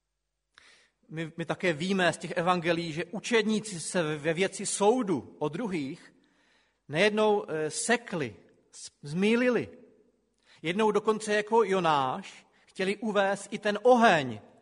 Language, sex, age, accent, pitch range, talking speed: Czech, male, 40-59, native, 165-215 Hz, 110 wpm